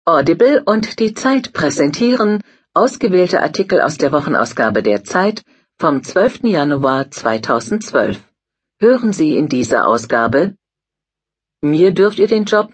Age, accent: 50-69, German